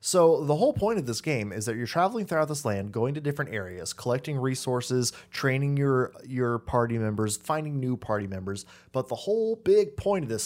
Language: English